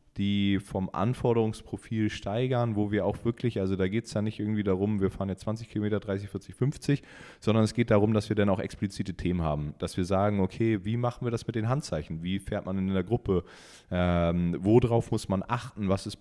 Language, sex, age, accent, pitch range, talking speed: German, male, 30-49, German, 90-110 Hz, 220 wpm